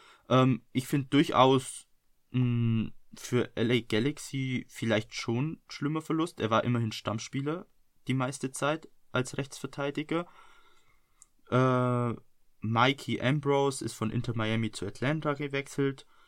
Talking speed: 110 wpm